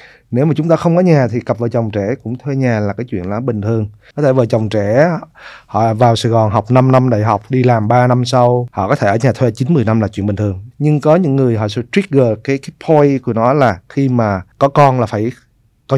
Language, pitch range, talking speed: Vietnamese, 115-140 Hz, 270 wpm